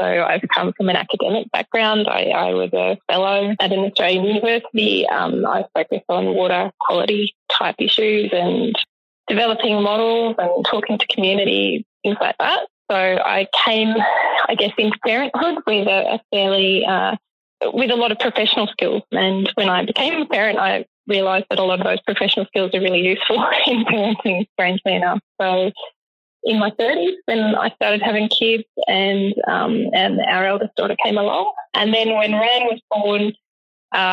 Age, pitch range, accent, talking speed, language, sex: 20-39, 190-225 Hz, Australian, 175 wpm, English, female